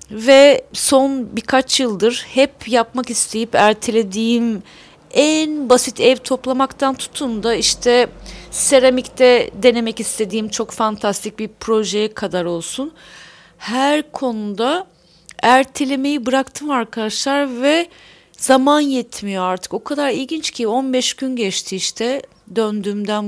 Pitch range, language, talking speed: 220-270 Hz, English, 110 wpm